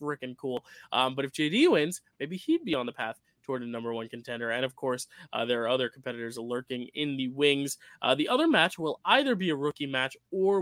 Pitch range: 120-145 Hz